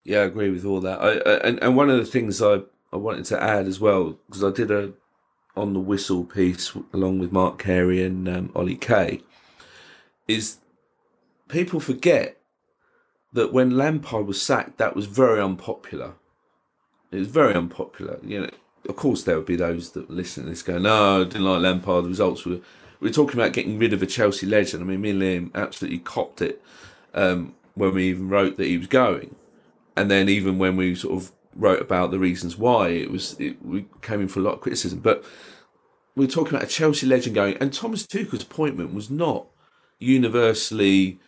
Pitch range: 95-130 Hz